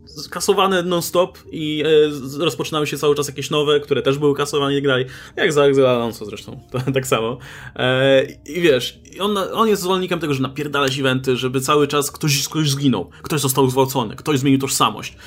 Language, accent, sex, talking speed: Polish, native, male, 185 wpm